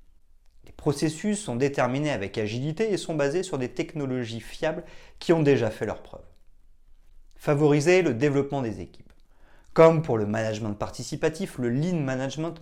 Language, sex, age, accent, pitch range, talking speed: French, male, 30-49, French, 105-140 Hz, 150 wpm